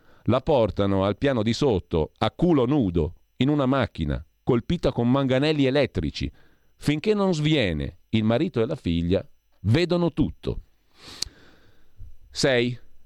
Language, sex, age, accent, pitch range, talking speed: Italian, male, 50-69, native, 85-130 Hz, 125 wpm